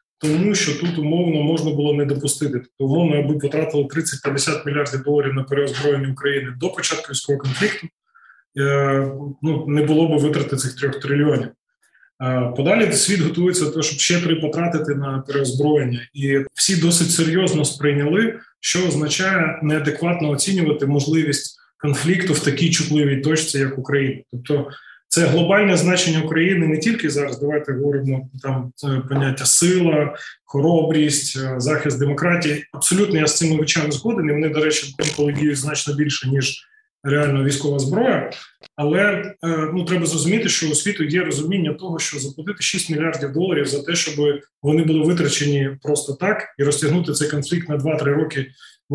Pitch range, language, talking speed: 140-170 Hz, Ukrainian, 145 wpm